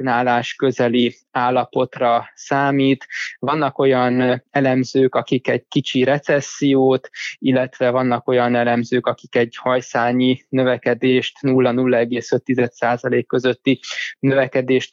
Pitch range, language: 125-140 Hz, Hungarian